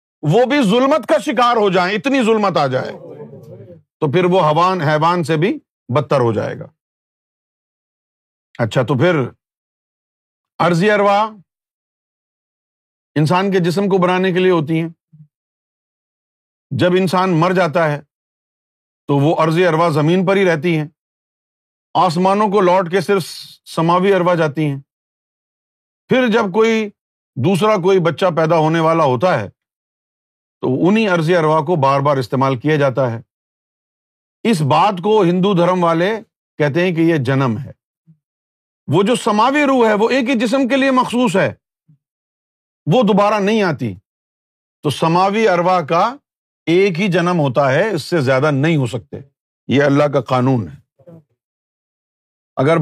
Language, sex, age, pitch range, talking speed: Urdu, male, 50-69, 145-195 Hz, 150 wpm